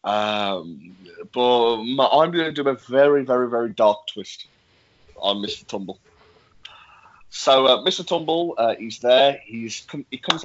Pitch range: 105-135 Hz